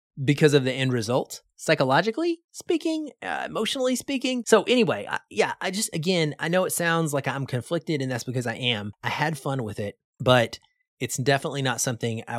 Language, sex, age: English, male, 30-49